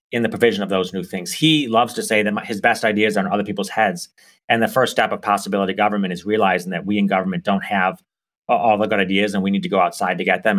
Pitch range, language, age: 100-120 Hz, English, 30-49